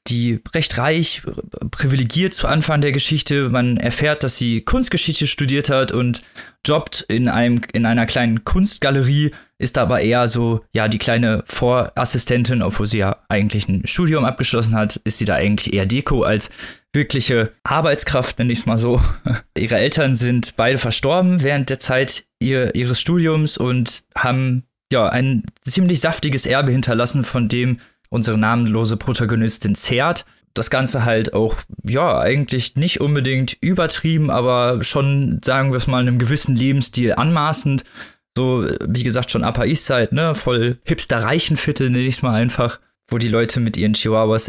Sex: male